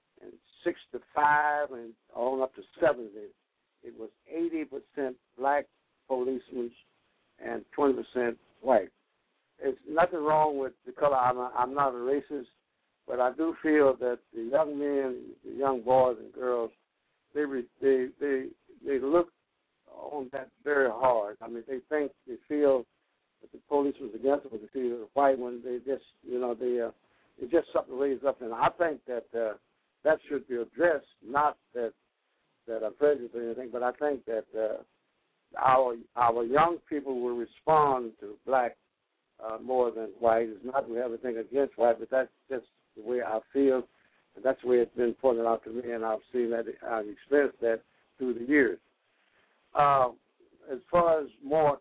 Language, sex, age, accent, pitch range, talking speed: English, male, 60-79, American, 120-145 Hz, 175 wpm